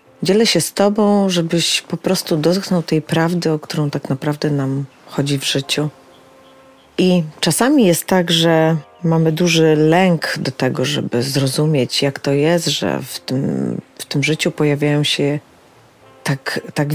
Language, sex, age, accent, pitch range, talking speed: Polish, female, 30-49, native, 140-170 Hz, 150 wpm